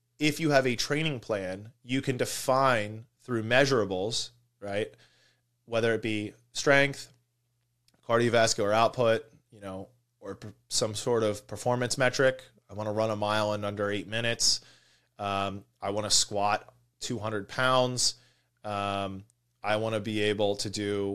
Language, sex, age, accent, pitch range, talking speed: English, male, 20-39, American, 110-125 Hz, 145 wpm